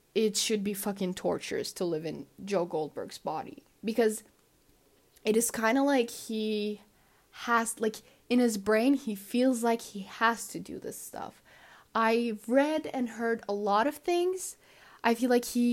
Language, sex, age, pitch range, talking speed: English, female, 10-29, 195-230 Hz, 170 wpm